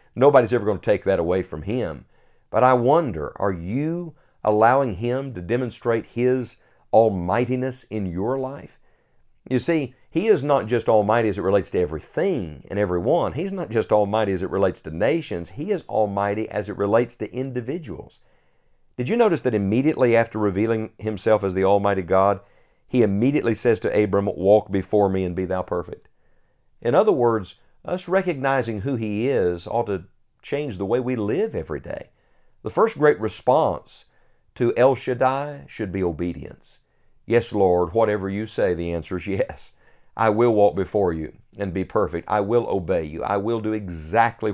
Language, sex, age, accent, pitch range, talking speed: English, male, 50-69, American, 95-125 Hz, 175 wpm